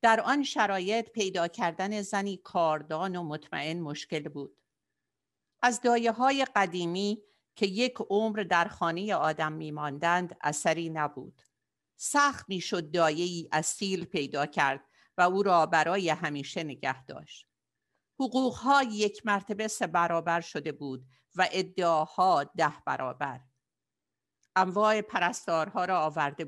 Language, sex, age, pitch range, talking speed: Persian, female, 50-69, 160-230 Hz, 115 wpm